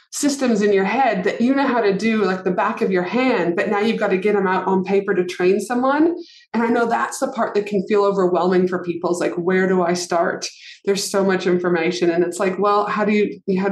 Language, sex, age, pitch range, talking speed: English, female, 20-39, 185-225 Hz, 260 wpm